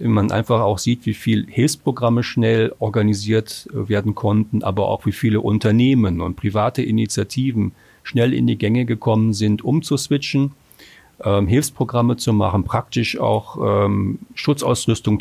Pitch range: 105-125 Hz